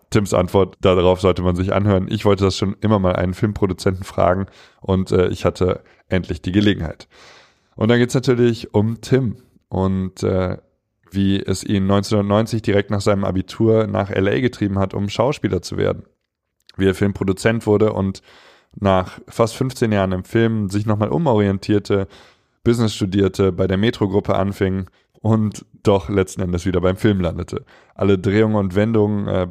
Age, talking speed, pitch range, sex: 20-39, 165 wpm, 95-105 Hz, male